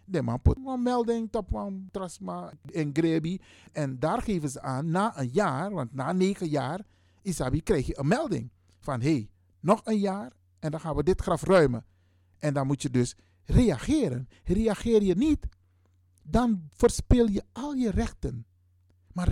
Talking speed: 170 wpm